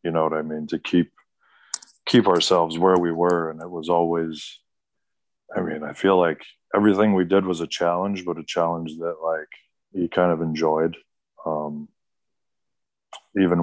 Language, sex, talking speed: English, male, 165 wpm